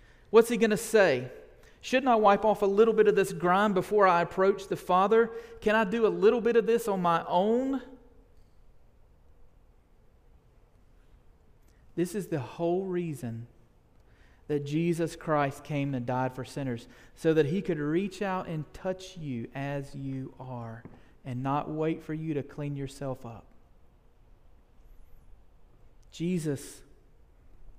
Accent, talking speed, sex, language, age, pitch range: American, 145 wpm, male, English, 40-59, 130-185 Hz